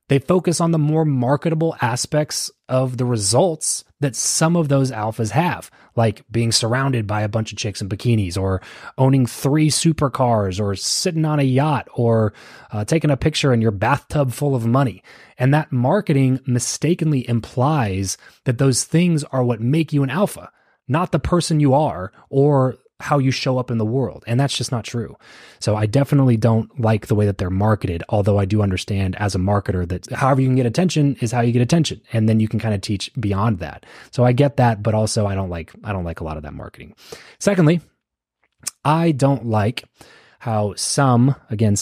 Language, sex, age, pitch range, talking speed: English, male, 20-39, 110-140 Hz, 200 wpm